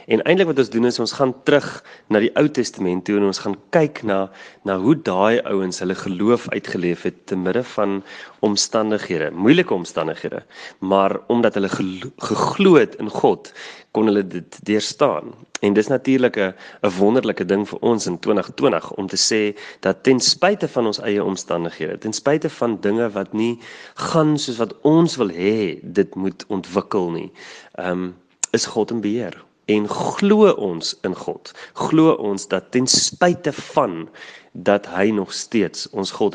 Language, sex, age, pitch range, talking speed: English, male, 30-49, 95-125 Hz, 165 wpm